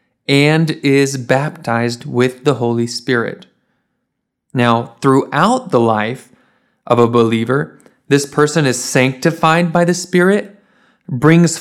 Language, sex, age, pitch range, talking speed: Russian, male, 20-39, 125-185 Hz, 115 wpm